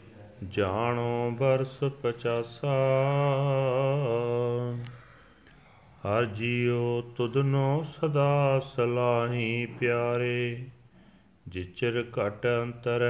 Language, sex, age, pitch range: Punjabi, male, 40-59, 120-140 Hz